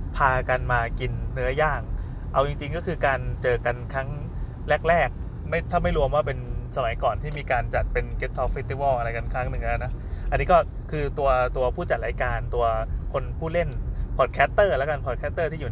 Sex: male